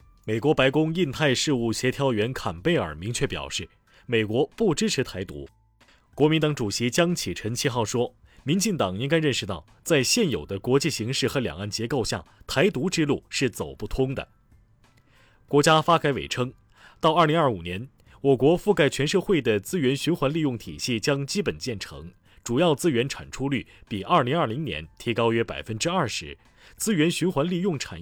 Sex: male